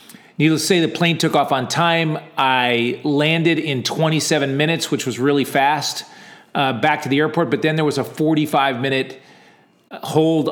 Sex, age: male, 40-59